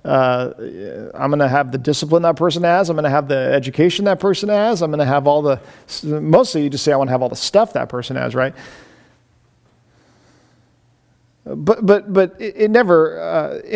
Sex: male